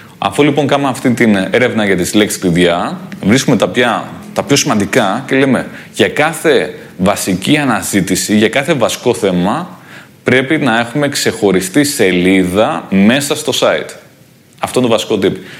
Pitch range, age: 105-135 Hz, 20-39